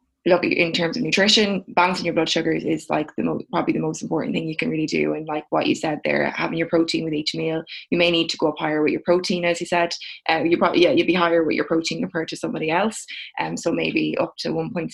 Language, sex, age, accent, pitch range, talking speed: English, female, 20-39, Irish, 160-175 Hz, 275 wpm